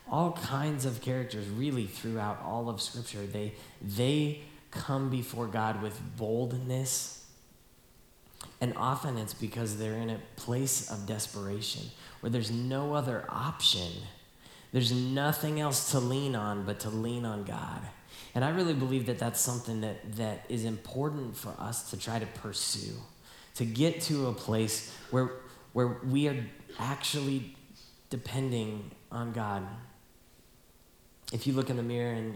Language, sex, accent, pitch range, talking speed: English, male, American, 105-130 Hz, 145 wpm